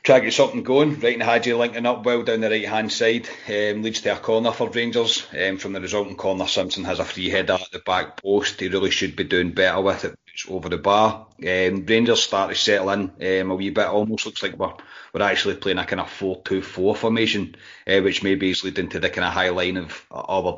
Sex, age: male, 30-49